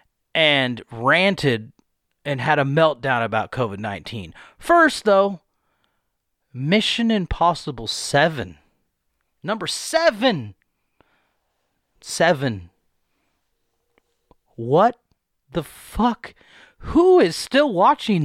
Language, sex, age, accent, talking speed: English, male, 30-49, American, 75 wpm